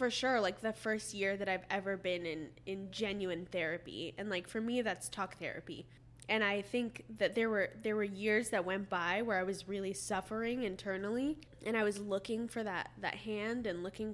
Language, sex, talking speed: English, female, 210 wpm